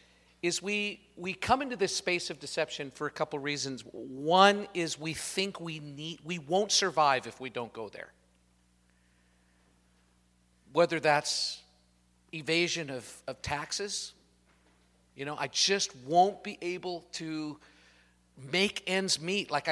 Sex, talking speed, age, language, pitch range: male, 140 wpm, 50-69, English, 135-170 Hz